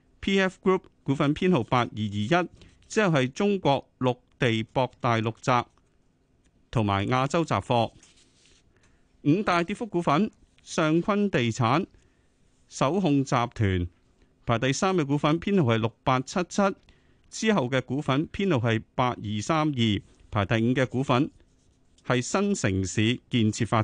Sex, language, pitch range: male, Chinese, 110-155 Hz